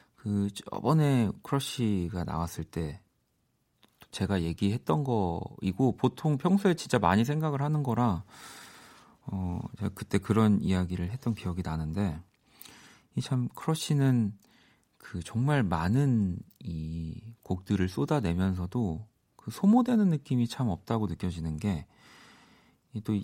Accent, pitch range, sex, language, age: native, 90-120 Hz, male, Korean, 40-59